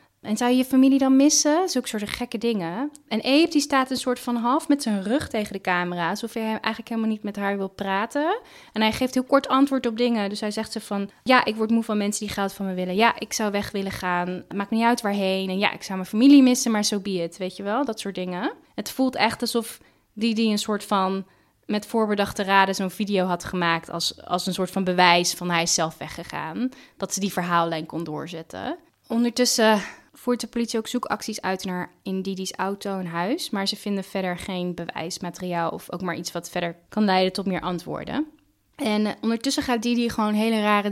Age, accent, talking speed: 10-29, Dutch, 230 wpm